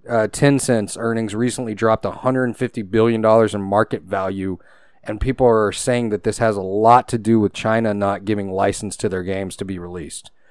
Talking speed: 185 wpm